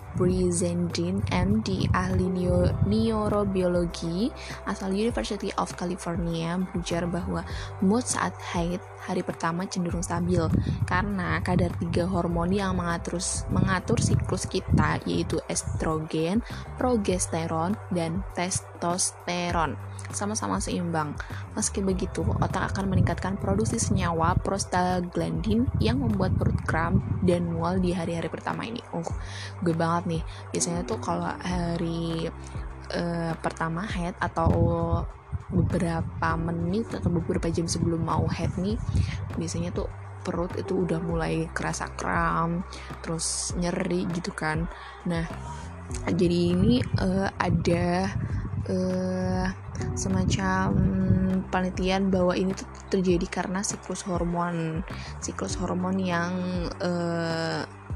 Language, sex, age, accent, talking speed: Indonesian, female, 20-39, native, 110 wpm